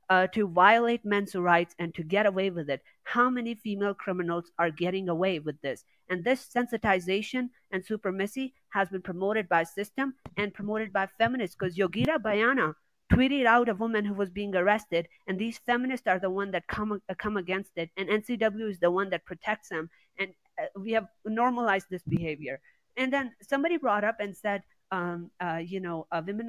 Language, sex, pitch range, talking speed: Malayalam, female, 180-220 Hz, 195 wpm